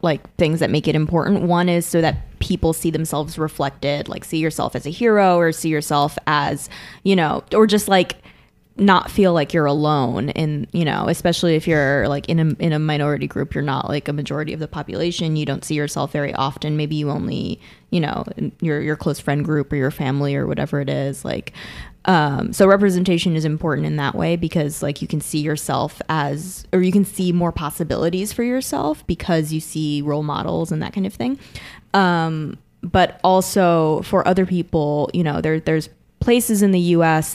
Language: English